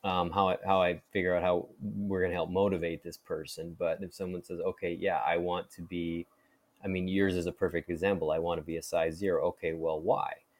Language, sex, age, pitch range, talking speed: English, male, 20-39, 85-100 Hz, 240 wpm